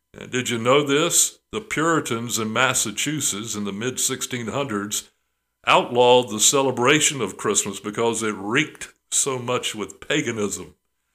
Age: 60-79